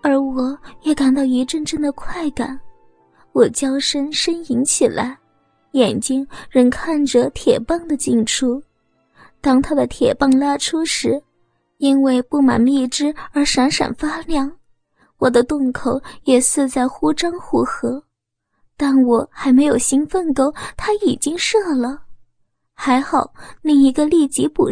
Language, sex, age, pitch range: Chinese, female, 20-39, 250-305 Hz